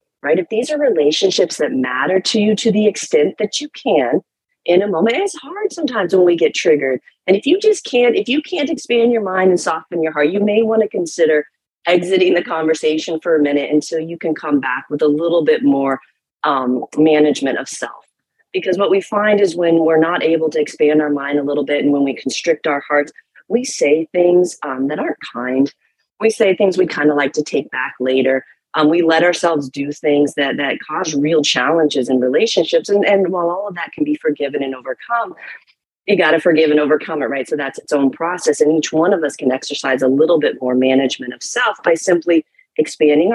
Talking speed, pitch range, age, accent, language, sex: 220 wpm, 150-205 Hz, 30-49, American, English, female